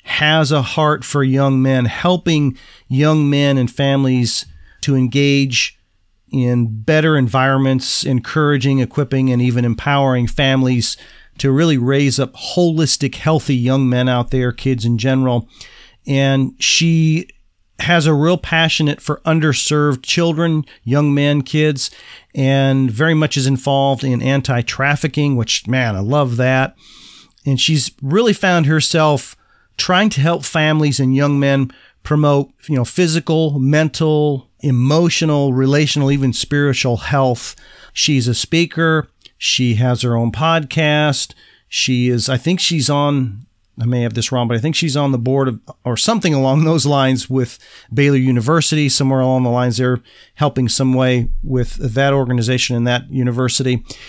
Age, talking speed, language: 40-59, 145 wpm, English